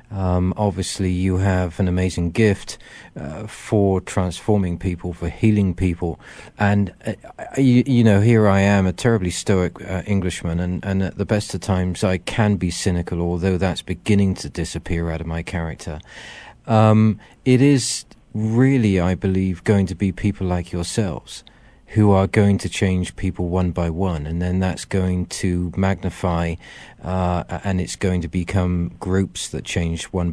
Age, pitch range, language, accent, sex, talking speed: 40-59, 85-100 Hz, English, British, male, 165 wpm